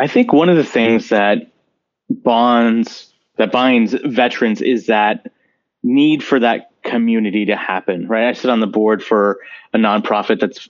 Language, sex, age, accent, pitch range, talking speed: English, male, 30-49, American, 105-155 Hz, 165 wpm